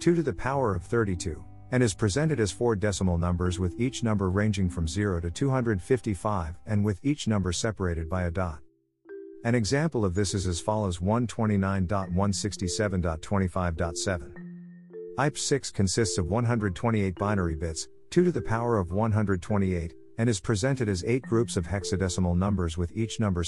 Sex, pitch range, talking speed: male, 90-110 Hz, 160 wpm